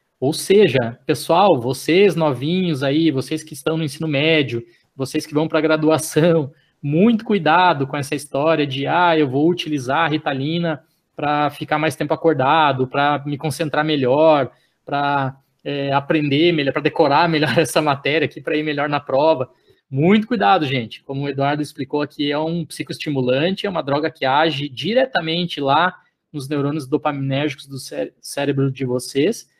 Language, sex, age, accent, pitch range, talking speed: Portuguese, male, 20-39, Brazilian, 140-165 Hz, 160 wpm